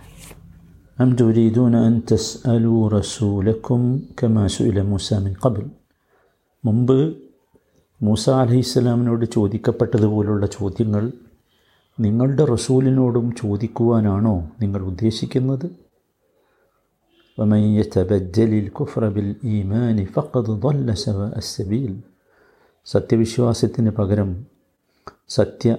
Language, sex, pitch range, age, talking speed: Malayalam, male, 100-125 Hz, 50-69, 75 wpm